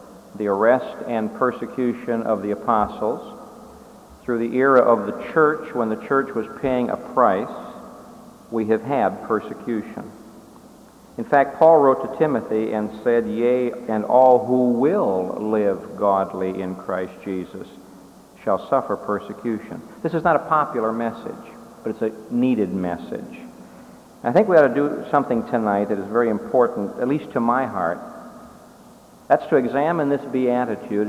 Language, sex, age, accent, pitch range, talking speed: English, male, 50-69, American, 105-130 Hz, 150 wpm